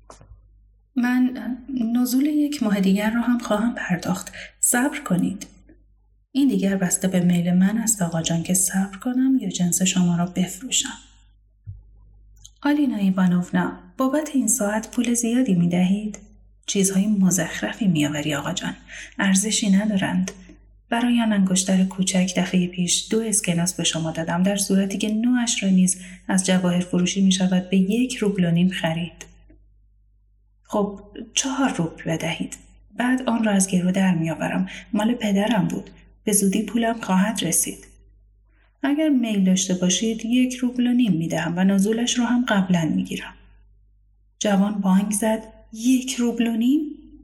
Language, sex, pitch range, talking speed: Persian, female, 170-225 Hz, 140 wpm